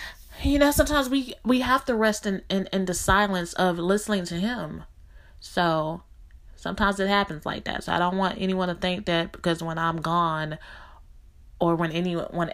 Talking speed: 180 wpm